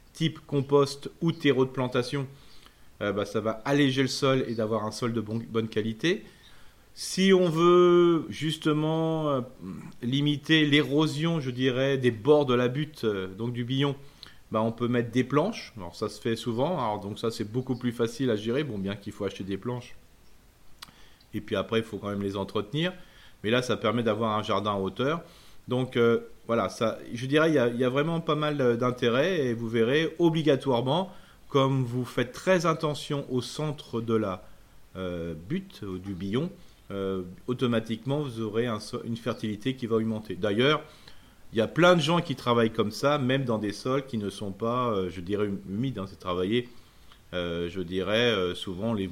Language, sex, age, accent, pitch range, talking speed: French, male, 30-49, French, 105-140 Hz, 190 wpm